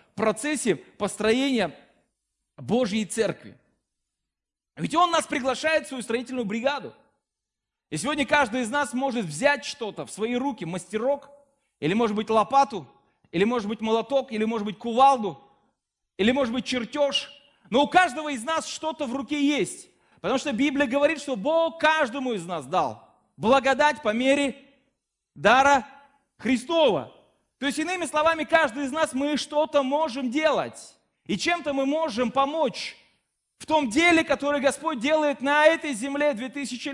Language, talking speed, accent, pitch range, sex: Russian, 150 wpm, native, 240-300 Hz, male